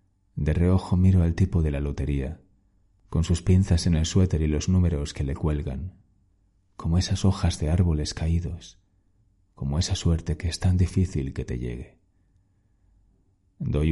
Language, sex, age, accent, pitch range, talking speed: Spanish, male, 30-49, Spanish, 80-95 Hz, 160 wpm